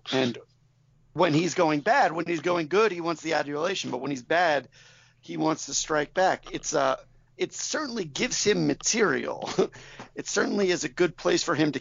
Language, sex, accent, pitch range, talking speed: English, male, American, 130-165 Hz, 200 wpm